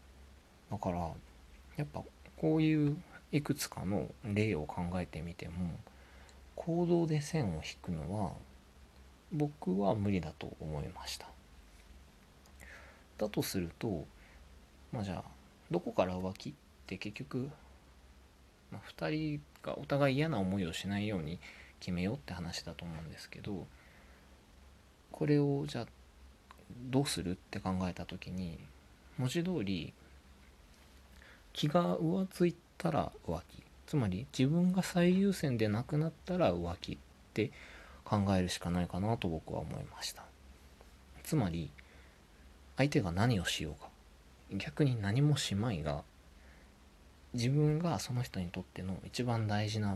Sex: male